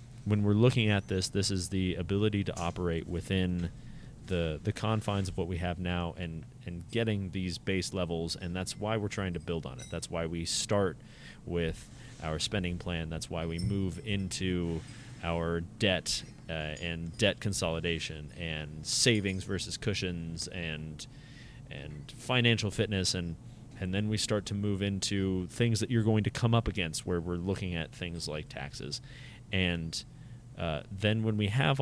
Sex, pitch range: male, 85-105 Hz